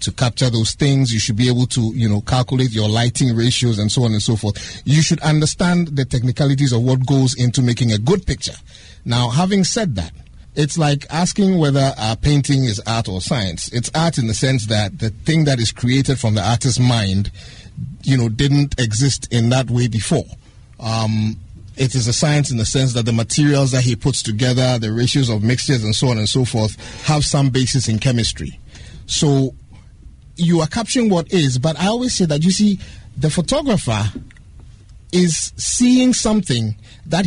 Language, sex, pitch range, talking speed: English, male, 115-160 Hz, 195 wpm